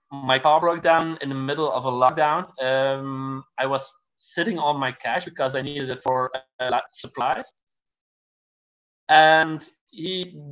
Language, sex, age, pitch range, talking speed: English, male, 20-39, 135-170 Hz, 145 wpm